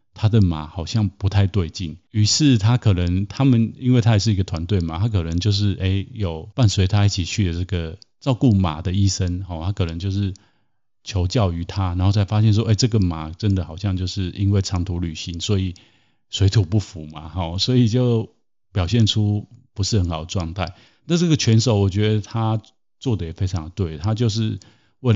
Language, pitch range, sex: Chinese, 95-115 Hz, male